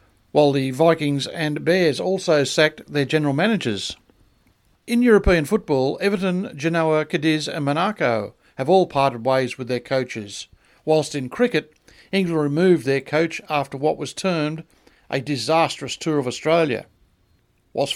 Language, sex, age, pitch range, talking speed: English, male, 50-69, 130-165 Hz, 140 wpm